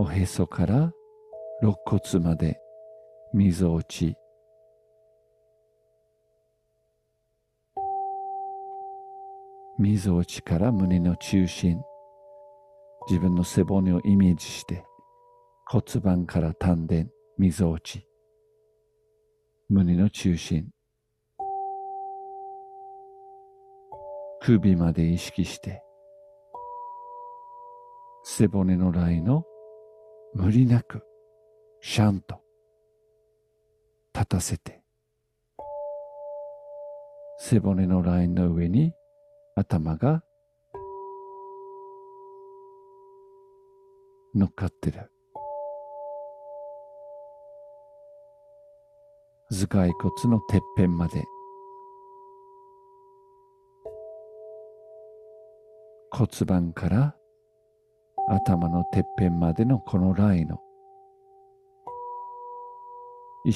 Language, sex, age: Japanese, male, 50-69